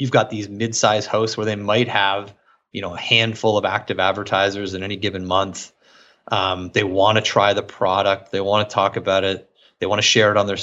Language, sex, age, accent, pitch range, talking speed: English, male, 30-49, American, 100-115 Hz, 225 wpm